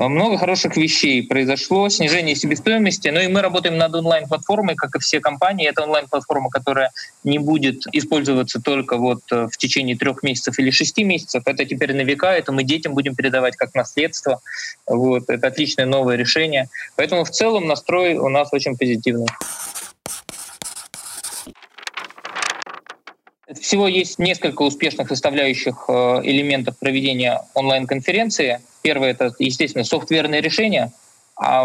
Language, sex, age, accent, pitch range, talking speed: Russian, male, 20-39, native, 135-160 Hz, 135 wpm